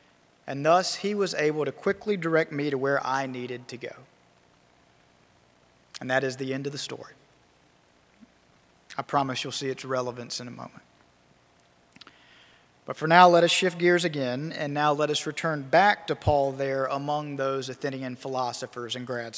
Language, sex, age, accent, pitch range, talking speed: English, male, 40-59, American, 130-200 Hz, 170 wpm